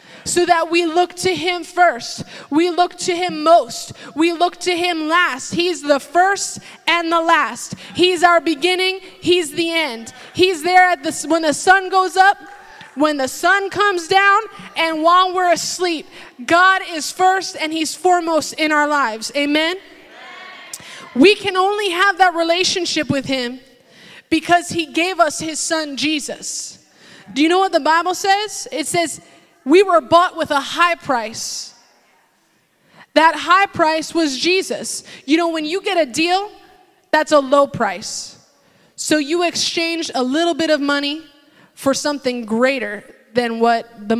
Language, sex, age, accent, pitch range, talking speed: English, female, 20-39, American, 280-355 Hz, 160 wpm